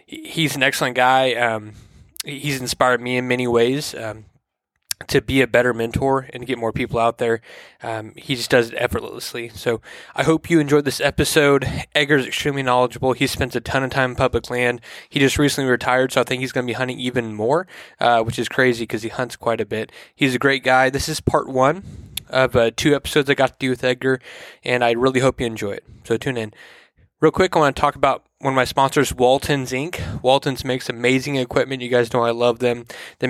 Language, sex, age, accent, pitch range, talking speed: English, male, 20-39, American, 120-140 Hz, 225 wpm